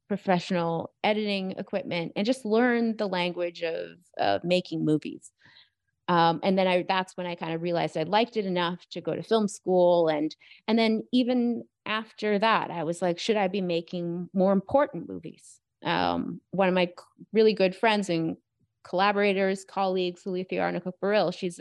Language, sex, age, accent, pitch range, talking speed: English, female, 30-49, American, 175-215 Hz, 170 wpm